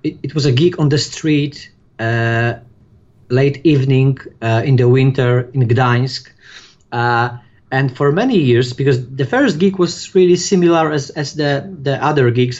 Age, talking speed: 30-49, 160 wpm